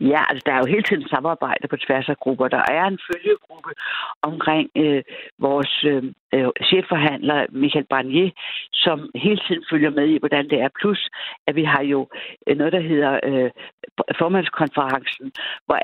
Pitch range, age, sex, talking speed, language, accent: 135-165 Hz, 60-79, female, 165 wpm, Danish, native